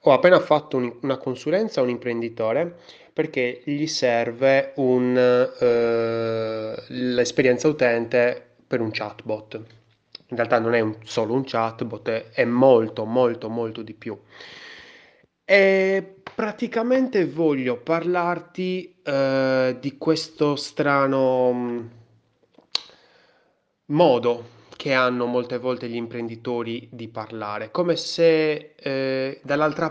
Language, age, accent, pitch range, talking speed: Italian, 20-39, native, 115-145 Hz, 110 wpm